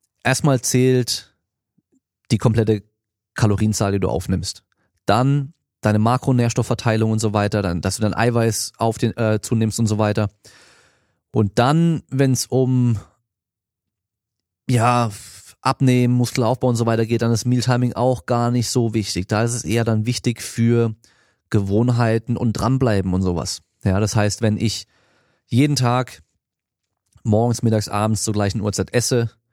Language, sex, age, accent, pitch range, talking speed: German, male, 30-49, German, 105-125 Hz, 145 wpm